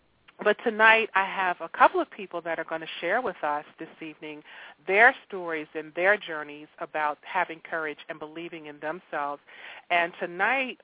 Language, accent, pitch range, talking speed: English, American, 160-185 Hz, 170 wpm